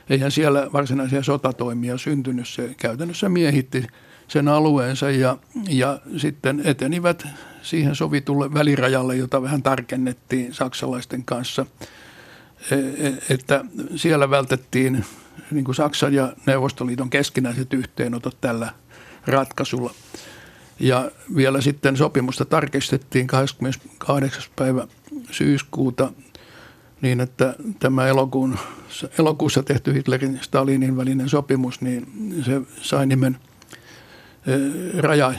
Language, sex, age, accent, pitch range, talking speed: Finnish, male, 60-79, native, 130-145 Hz, 100 wpm